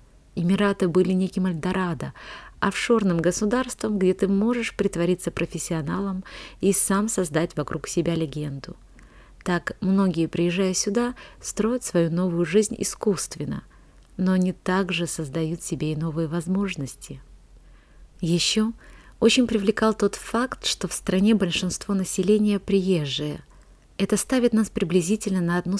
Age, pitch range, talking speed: 30-49, 165-200 Hz, 120 wpm